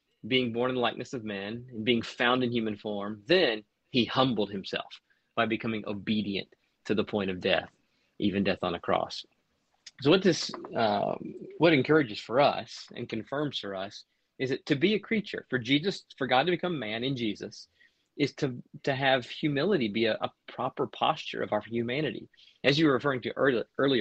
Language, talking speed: English, 190 wpm